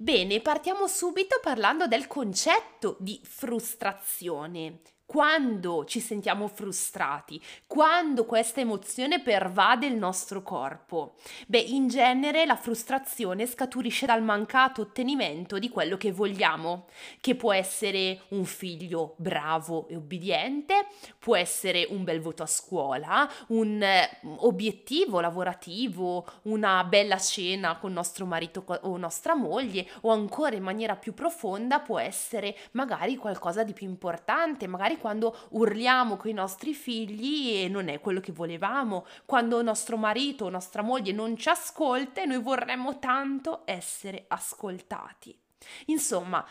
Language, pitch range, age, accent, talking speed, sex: Italian, 190-260 Hz, 20-39, native, 130 wpm, female